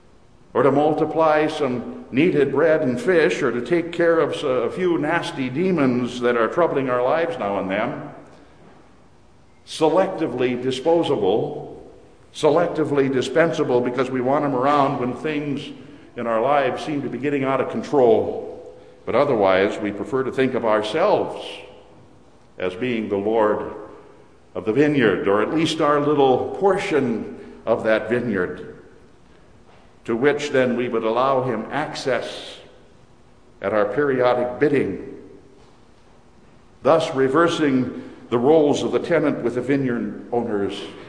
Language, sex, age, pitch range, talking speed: English, male, 60-79, 115-145 Hz, 135 wpm